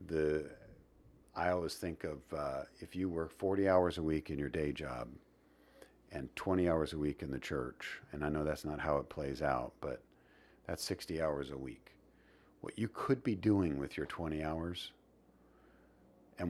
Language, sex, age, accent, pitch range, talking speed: English, male, 50-69, American, 75-90 Hz, 180 wpm